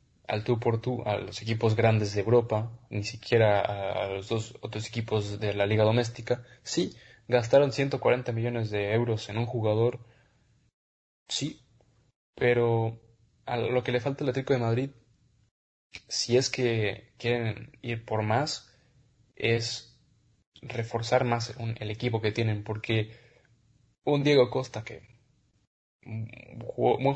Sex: male